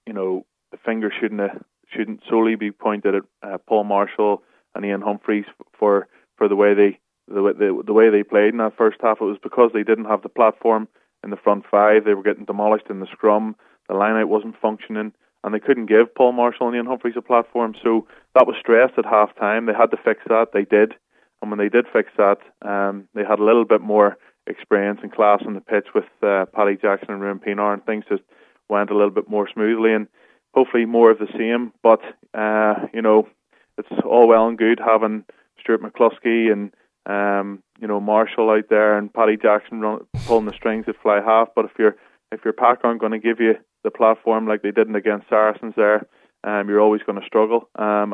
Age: 20-39